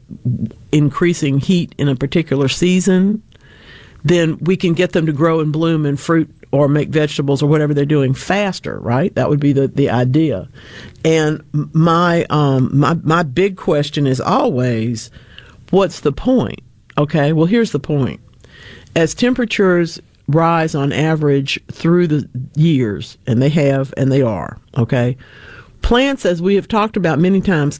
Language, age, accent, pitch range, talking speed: English, 50-69, American, 135-165 Hz, 155 wpm